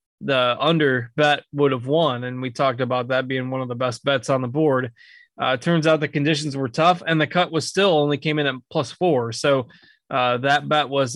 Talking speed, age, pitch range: 230 wpm, 20-39, 130-150 Hz